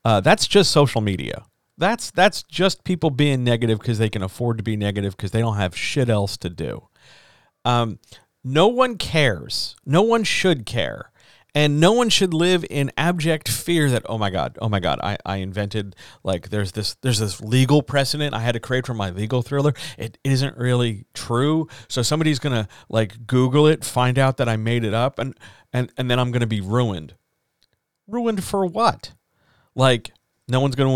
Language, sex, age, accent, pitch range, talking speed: English, male, 40-59, American, 110-140 Hz, 200 wpm